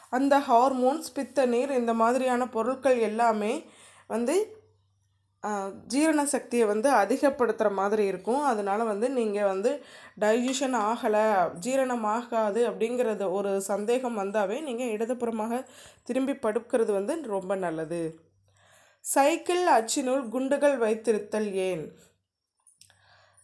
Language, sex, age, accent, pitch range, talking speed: English, female, 20-39, Indian, 205-260 Hz, 95 wpm